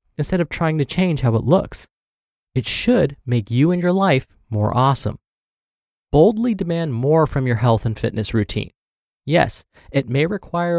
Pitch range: 115-165 Hz